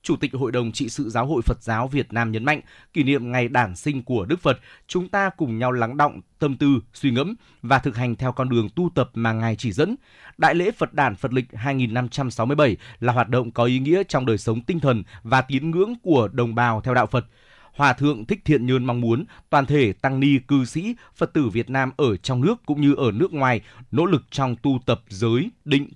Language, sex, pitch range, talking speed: Vietnamese, male, 120-145 Hz, 240 wpm